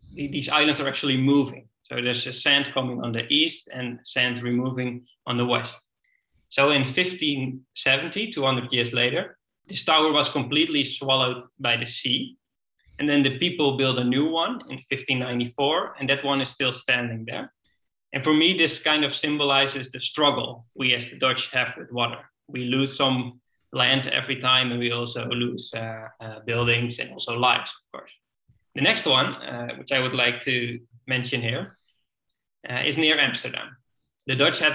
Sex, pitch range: male, 125-140 Hz